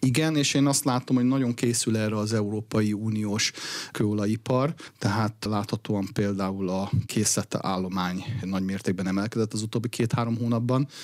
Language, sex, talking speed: Hungarian, male, 140 wpm